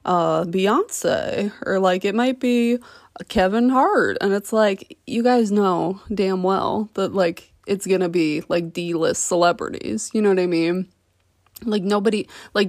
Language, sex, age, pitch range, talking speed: English, female, 20-39, 165-215 Hz, 155 wpm